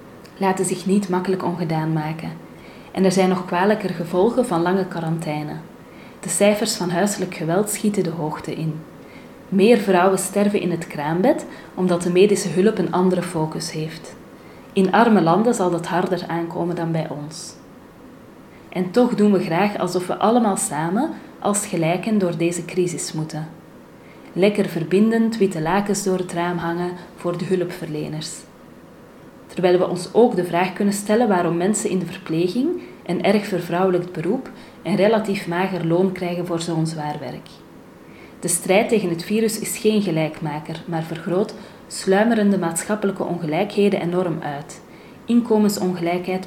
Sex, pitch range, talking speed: female, 170-200 Hz, 150 wpm